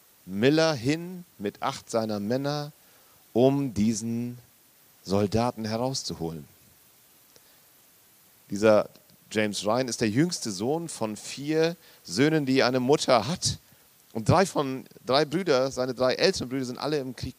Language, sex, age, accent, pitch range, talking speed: German, male, 40-59, German, 110-150 Hz, 130 wpm